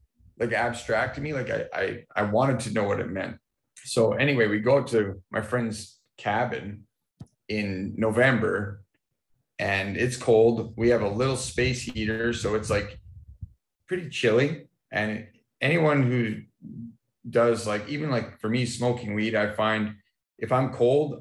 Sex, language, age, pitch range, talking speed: male, English, 30-49, 105-130 Hz, 155 wpm